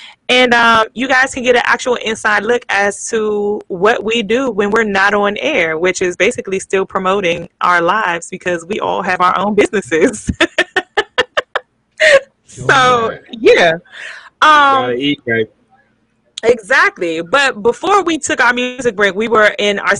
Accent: American